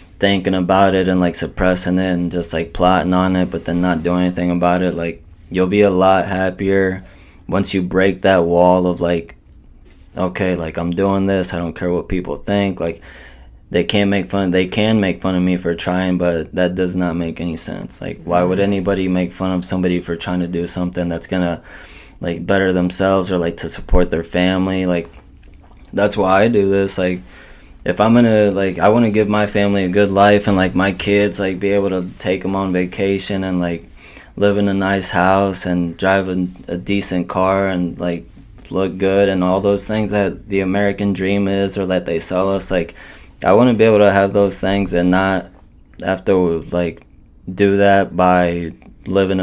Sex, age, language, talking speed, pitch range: male, 20-39, English, 205 wpm, 90-100 Hz